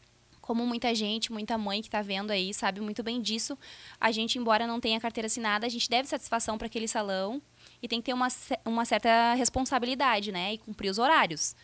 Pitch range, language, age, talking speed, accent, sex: 215-245 Hz, Portuguese, 10-29, 205 wpm, Brazilian, female